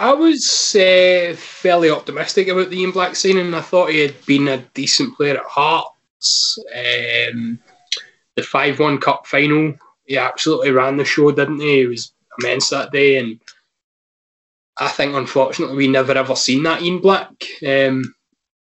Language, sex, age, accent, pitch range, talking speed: English, male, 20-39, British, 130-170 Hz, 160 wpm